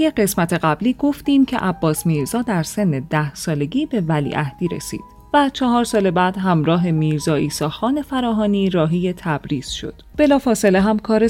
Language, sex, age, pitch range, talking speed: Persian, female, 30-49, 160-230 Hz, 155 wpm